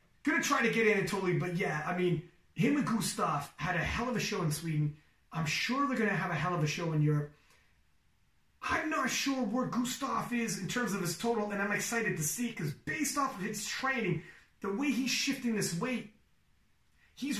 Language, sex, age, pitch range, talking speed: English, male, 30-49, 160-235 Hz, 210 wpm